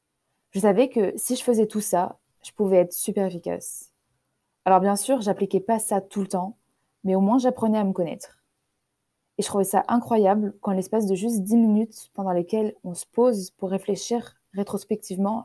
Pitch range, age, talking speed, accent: 185-220 Hz, 20-39, 185 wpm, French